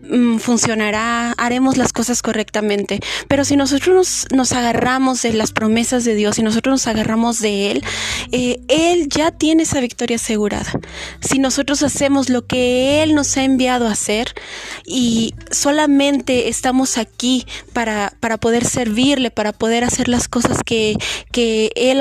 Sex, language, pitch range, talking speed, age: female, Spanish, 220-265 Hz, 155 wpm, 30-49